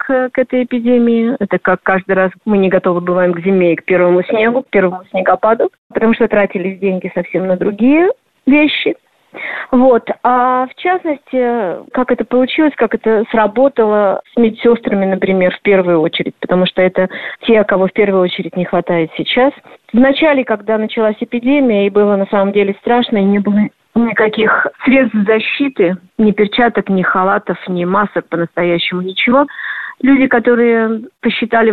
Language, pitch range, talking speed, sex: Russian, 185-235 Hz, 155 wpm, female